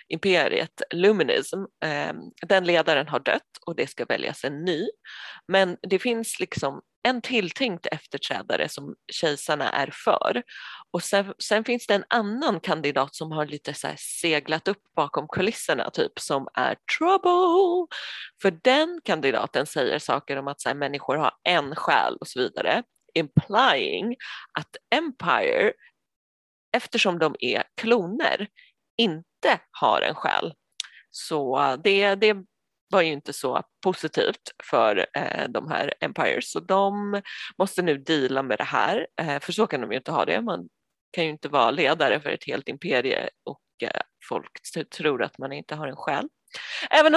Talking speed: 155 wpm